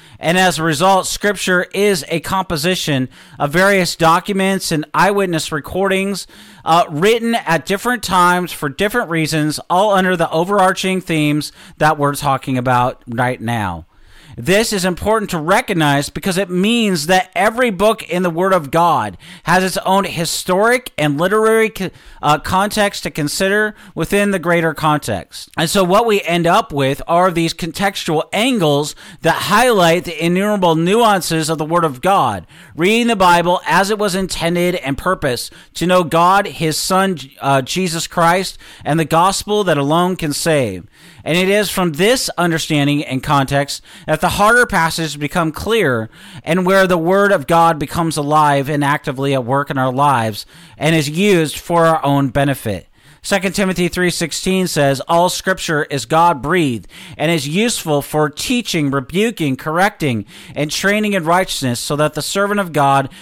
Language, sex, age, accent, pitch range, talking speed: English, male, 40-59, American, 150-190 Hz, 160 wpm